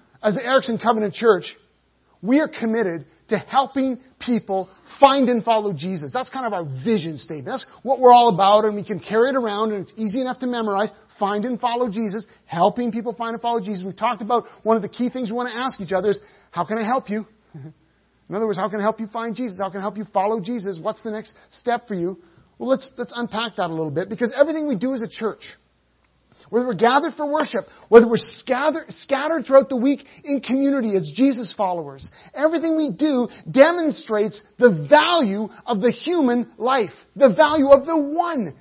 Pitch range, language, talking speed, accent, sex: 205-265 Hz, English, 215 wpm, American, male